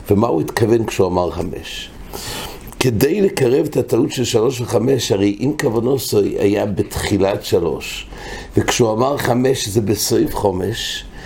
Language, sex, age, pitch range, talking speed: English, male, 60-79, 105-135 Hz, 100 wpm